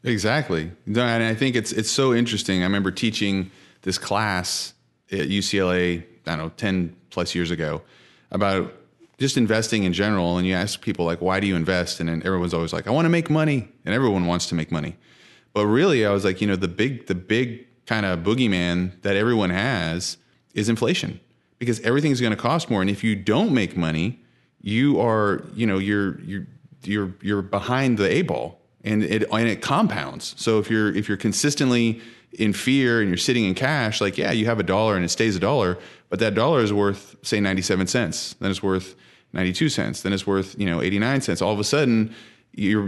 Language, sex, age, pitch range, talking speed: English, male, 30-49, 95-115 Hz, 215 wpm